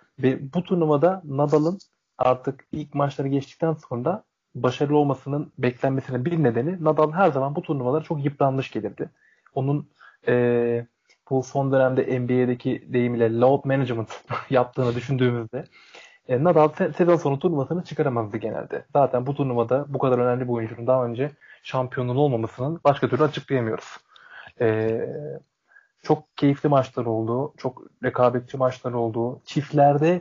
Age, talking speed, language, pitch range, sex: 30-49, 130 wpm, Turkish, 130-155 Hz, male